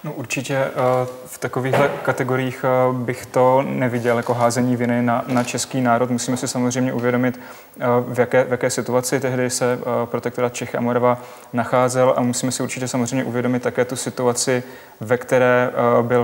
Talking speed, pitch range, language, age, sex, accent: 150 wpm, 120-130 Hz, Czech, 30-49, male, native